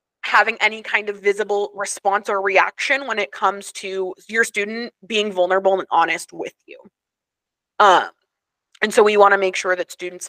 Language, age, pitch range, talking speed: English, 20-39, 185-245 Hz, 175 wpm